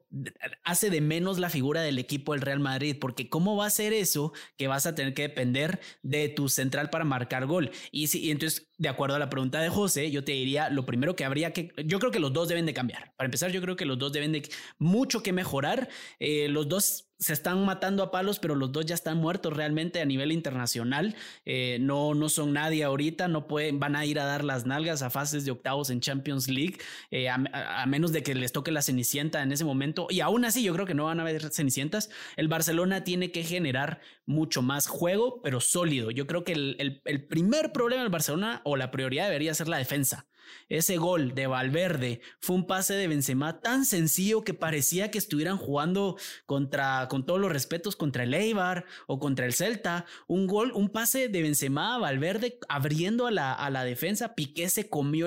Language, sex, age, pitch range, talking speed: Spanish, male, 20-39, 140-180 Hz, 220 wpm